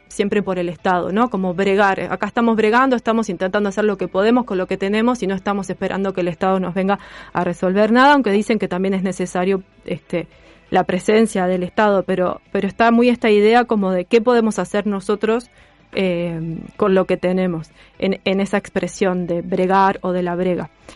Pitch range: 185-220 Hz